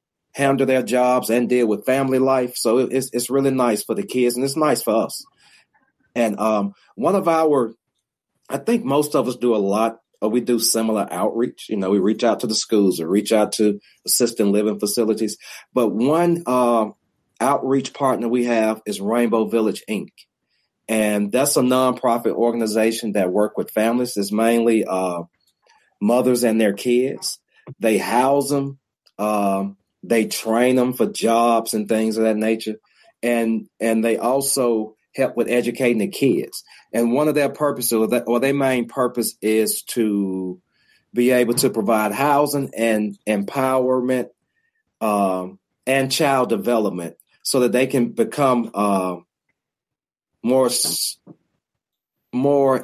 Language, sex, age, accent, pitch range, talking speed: English, male, 40-59, American, 110-130 Hz, 155 wpm